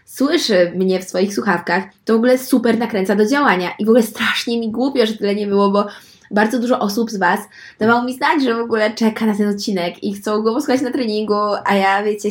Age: 20-39